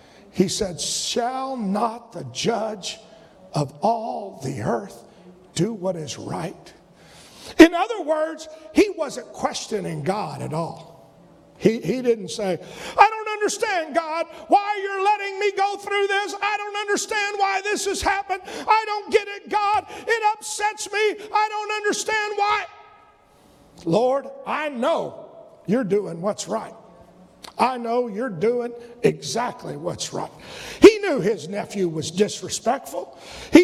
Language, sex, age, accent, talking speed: English, male, 50-69, American, 140 wpm